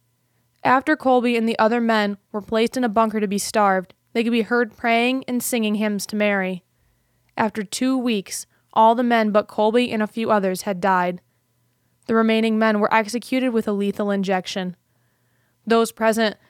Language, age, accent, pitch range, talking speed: English, 20-39, American, 195-240 Hz, 180 wpm